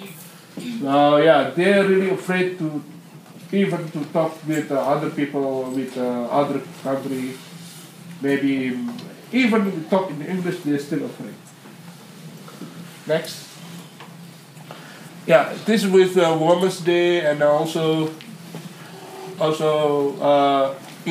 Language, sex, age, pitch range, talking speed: English, male, 50-69, 150-180 Hz, 105 wpm